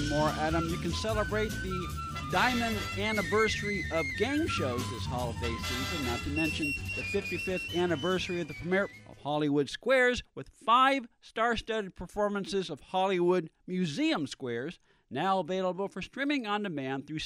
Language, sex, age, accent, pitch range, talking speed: English, male, 50-69, American, 140-195 Hz, 145 wpm